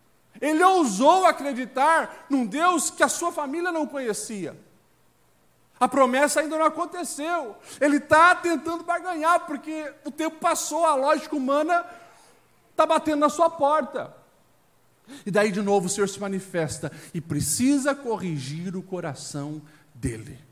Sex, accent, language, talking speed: male, Brazilian, Portuguese, 135 wpm